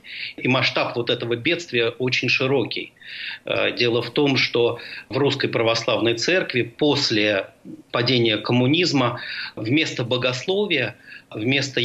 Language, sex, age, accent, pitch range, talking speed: Russian, male, 40-59, native, 110-145 Hz, 105 wpm